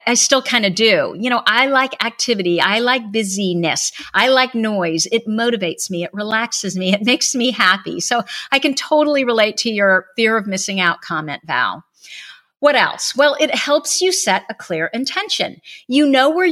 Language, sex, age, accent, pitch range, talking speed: English, female, 50-69, American, 195-265 Hz, 190 wpm